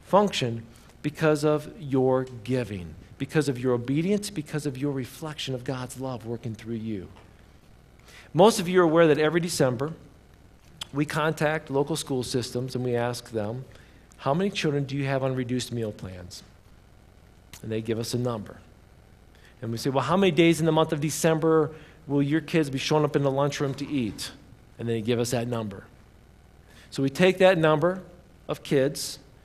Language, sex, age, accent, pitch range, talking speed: English, male, 50-69, American, 115-155 Hz, 180 wpm